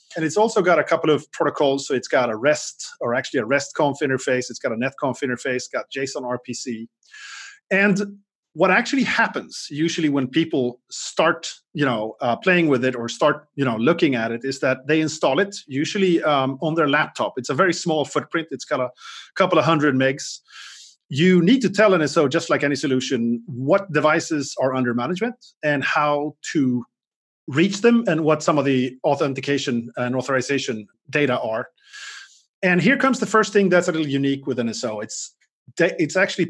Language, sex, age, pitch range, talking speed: English, male, 30-49, 130-175 Hz, 185 wpm